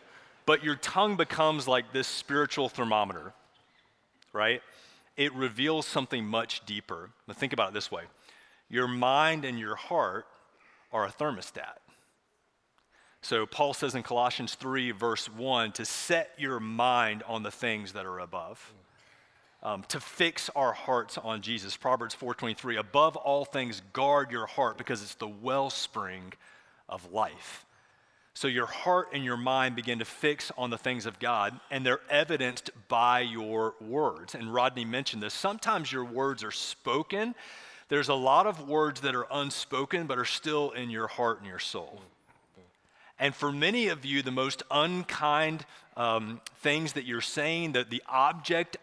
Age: 30-49